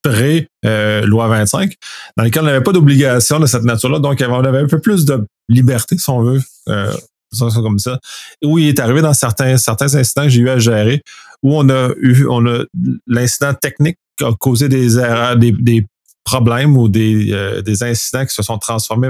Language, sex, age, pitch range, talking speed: French, male, 30-49, 110-130 Hz, 200 wpm